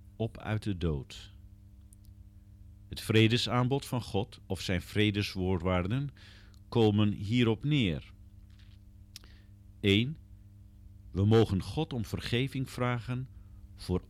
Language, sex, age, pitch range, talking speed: Dutch, male, 50-69, 95-110 Hz, 95 wpm